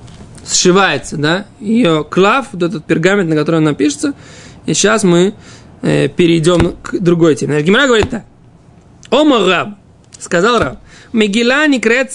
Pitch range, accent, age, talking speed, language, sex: 165-220 Hz, native, 20-39, 135 wpm, Russian, male